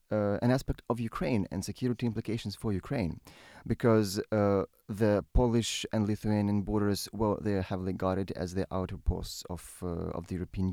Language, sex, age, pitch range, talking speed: English, male, 30-49, 95-115 Hz, 160 wpm